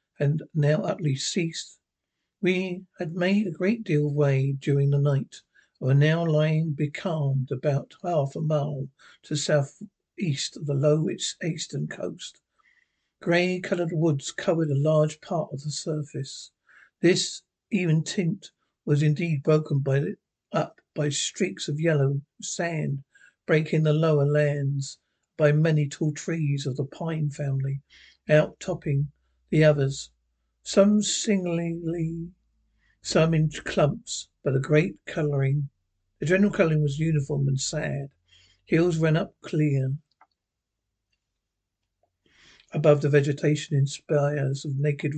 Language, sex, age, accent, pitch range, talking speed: English, male, 60-79, British, 140-170 Hz, 130 wpm